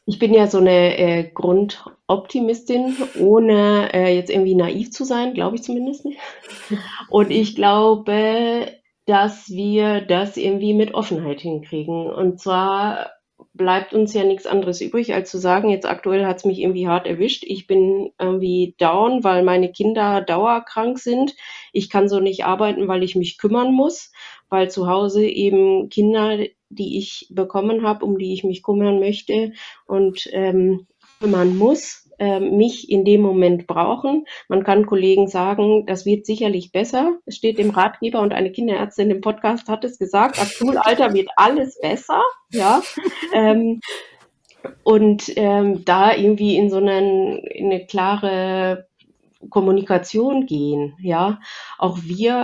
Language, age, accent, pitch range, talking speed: German, 30-49, German, 185-220 Hz, 150 wpm